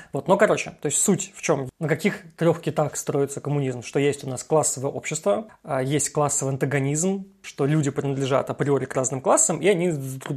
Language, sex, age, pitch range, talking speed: Russian, male, 20-39, 140-160 Hz, 190 wpm